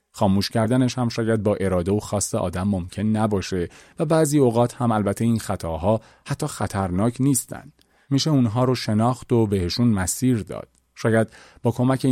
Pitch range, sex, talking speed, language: 95-125 Hz, male, 160 wpm, Persian